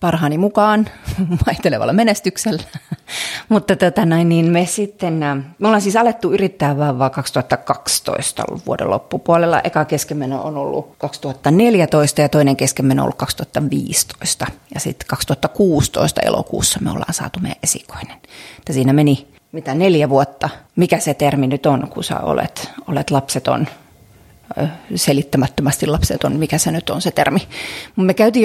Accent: native